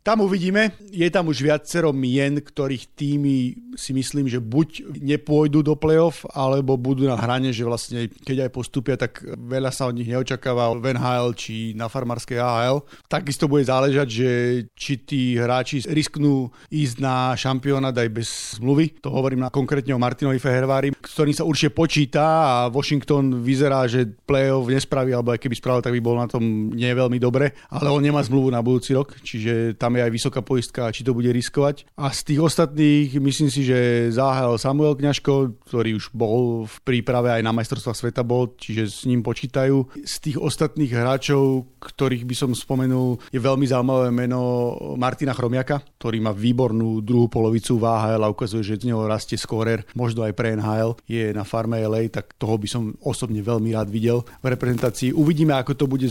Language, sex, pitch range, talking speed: Slovak, male, 120-140 Hz, 180 wpm